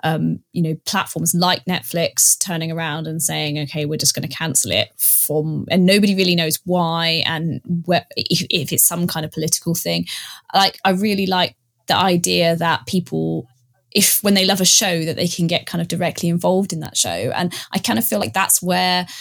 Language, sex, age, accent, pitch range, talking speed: English, female, 20-39, British, 160-185 Hz, 205 wpm